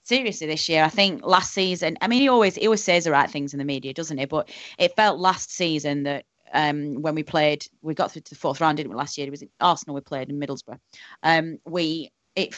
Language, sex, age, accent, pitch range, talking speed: English, female, 30-49, British, 145-175 Hz, 260 wpm